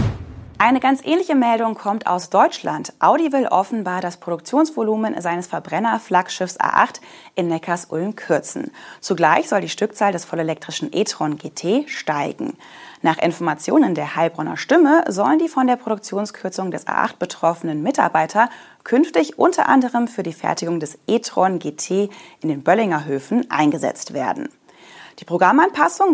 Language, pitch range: German, 165-240 Hz